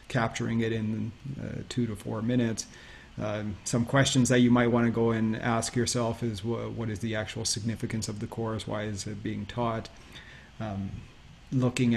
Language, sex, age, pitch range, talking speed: English, male, 30-49, 110-120 Hz, 175 wpm